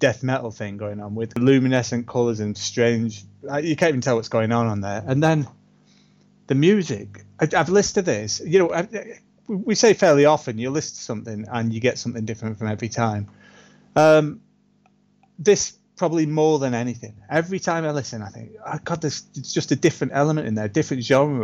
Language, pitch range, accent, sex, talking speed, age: English, 115-155 Hz, British, male, 190 wpm, 30-49